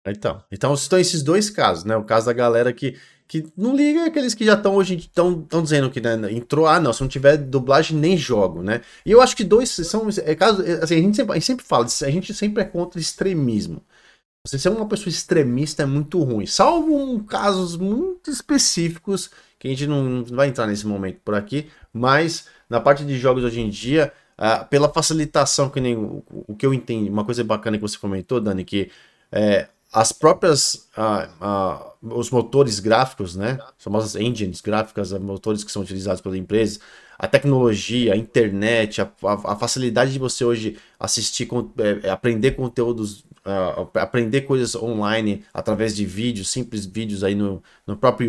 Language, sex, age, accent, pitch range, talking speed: Portuguese, male, 20-39, Brazilian, 105-160 Hz, 190 wpm